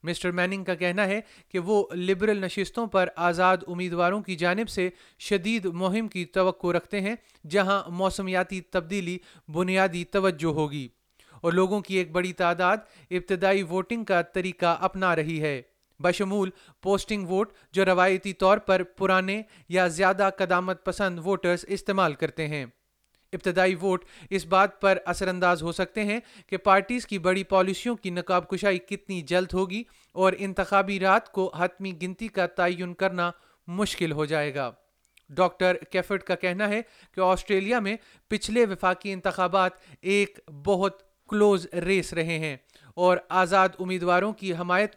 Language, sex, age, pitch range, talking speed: Urdu, male, 30-49, 180-195 Hz, 150 wpm